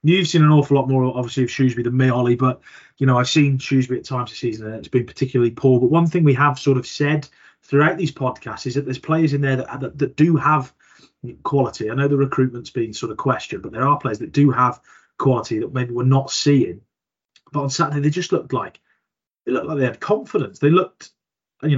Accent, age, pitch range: British, 30-49, 125-150 Hz